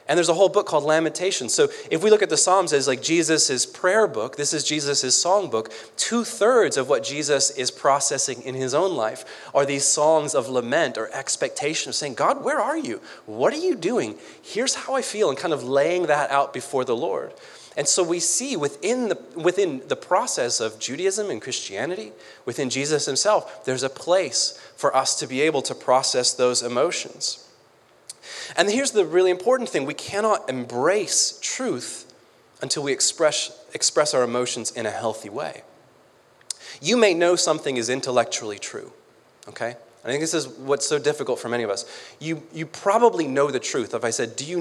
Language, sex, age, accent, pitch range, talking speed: English, male, 30-49, American, 125-205 Hz, 190 wpm